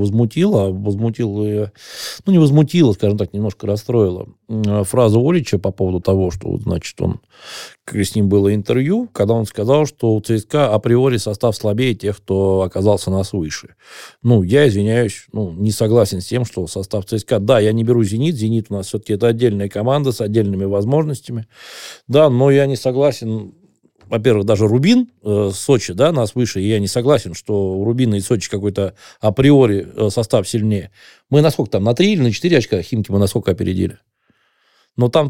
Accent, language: native, Russian